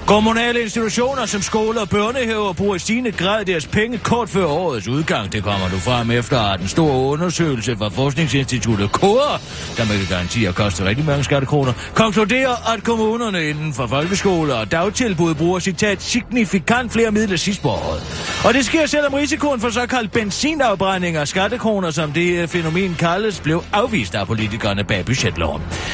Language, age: Danish, 40-59